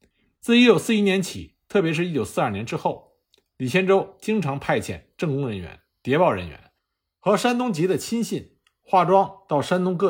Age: 50-69